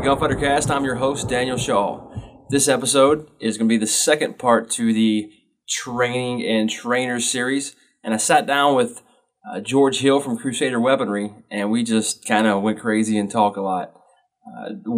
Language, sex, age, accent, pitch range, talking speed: English, male, 20-39, American, 105-125 Hz, 180 wpm